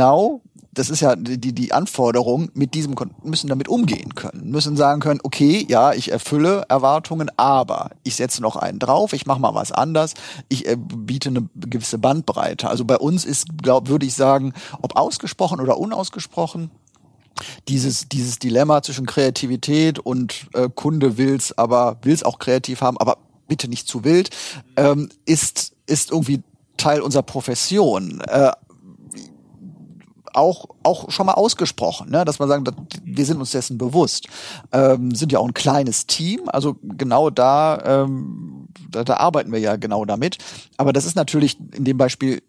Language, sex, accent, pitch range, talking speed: German, male, German, 125-150 Hz, 160 wpm